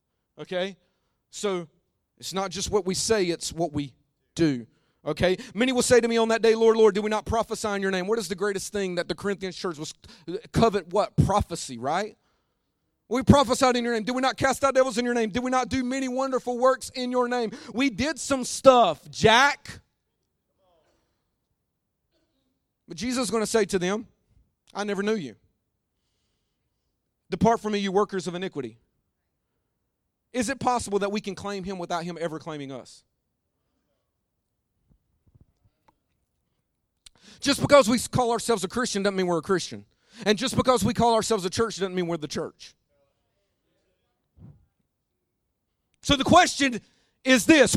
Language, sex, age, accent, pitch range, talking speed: English, male, 40-59, American, 185-260 Hz, 170 wpm